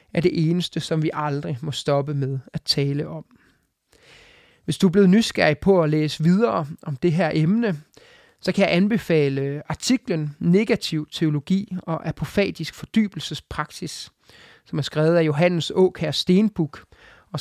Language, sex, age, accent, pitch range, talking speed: English, male, 30-49, Danish, 150-185 Hz, 150 wpm